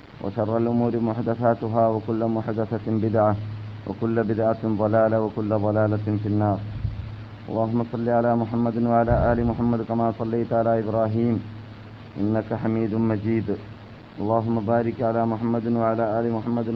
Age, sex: 30-49, male